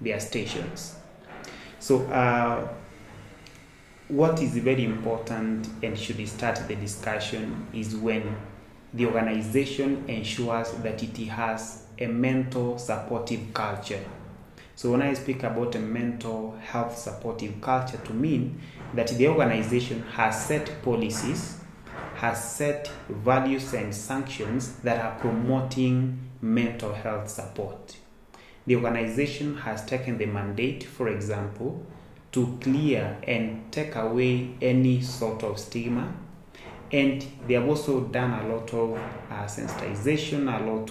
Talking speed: 120 wpm